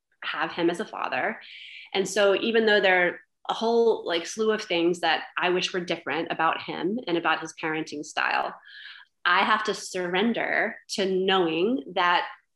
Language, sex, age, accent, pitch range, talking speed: English, female, 20-39, American, 170-215 Hz, 170 wpm